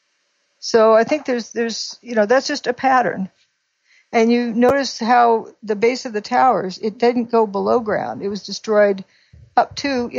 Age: 60-79